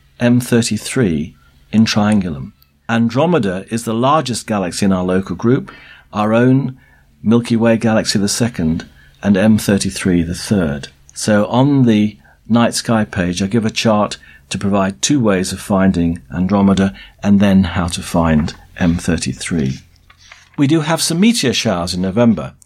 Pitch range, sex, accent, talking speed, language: 95-125 Hz, male, British, 145 wpm, English